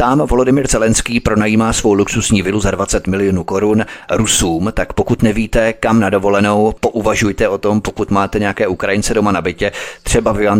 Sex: male